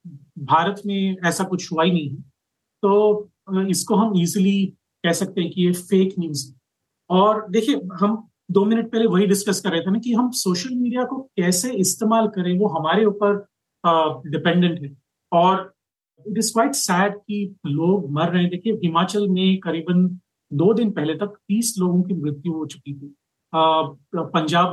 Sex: male